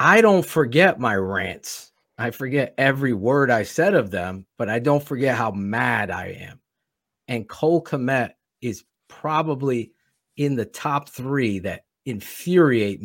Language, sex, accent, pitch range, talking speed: English, male, American, 115-150 Hz, 145 wpm